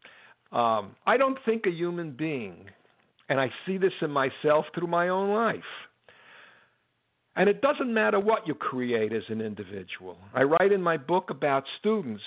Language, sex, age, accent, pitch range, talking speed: English, male, 60-79, American, 135-205 Hz, 165 wpm